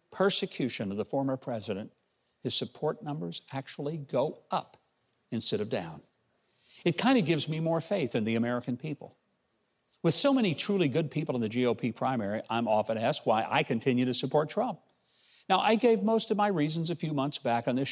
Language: English